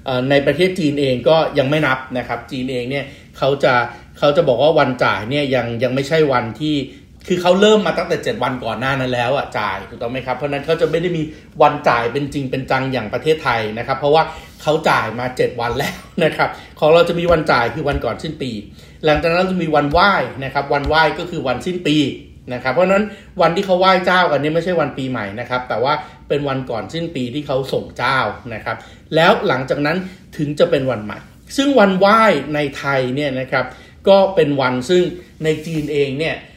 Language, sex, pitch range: Thai, male, 130-175 Hz